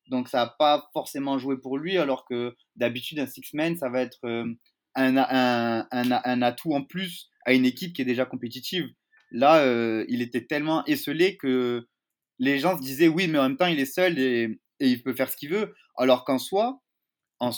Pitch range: 125-175 Hz